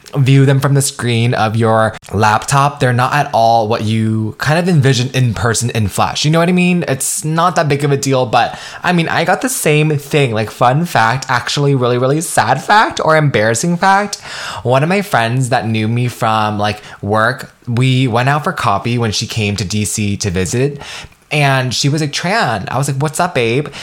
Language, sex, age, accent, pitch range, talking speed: English, male, 20-39, American, 110-150 Hz, 215 wpm